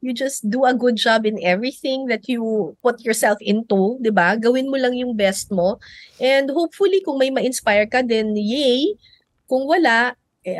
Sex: female